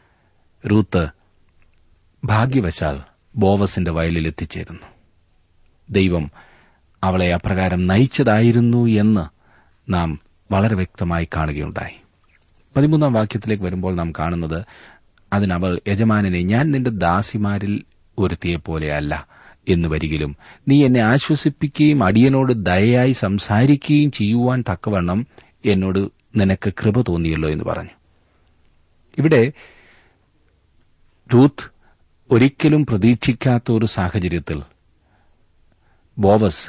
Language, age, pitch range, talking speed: Malayalam, 40-59, 85-110 Hz, 75 wpm